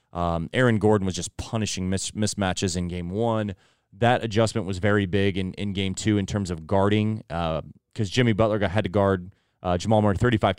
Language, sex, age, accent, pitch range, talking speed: English, male, 20-39, American, 95-115 Hz, 195 wpm